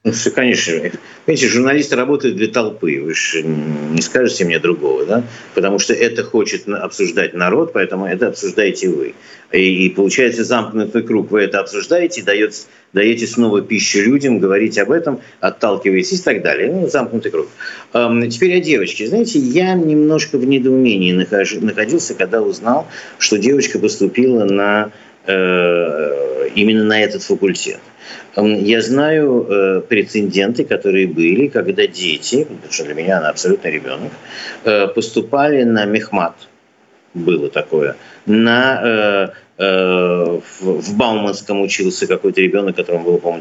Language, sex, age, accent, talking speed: Russian, male, 50-69, native, 140 wpm